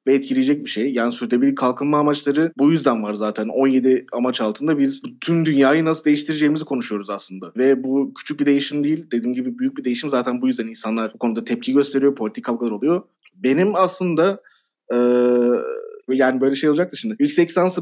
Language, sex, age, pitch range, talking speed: Turkish, male, 30-49, 135-190 Hz, 185 wpm